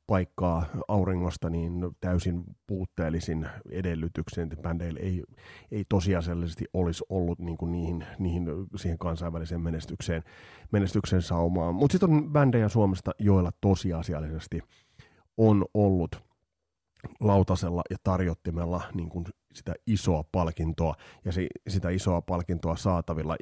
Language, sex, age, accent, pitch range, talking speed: Finnish, male, 30-49, native, 85-100 Hz, 115 wpm